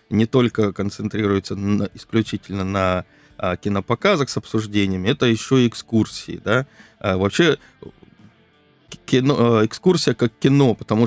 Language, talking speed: Russian, 120 wpm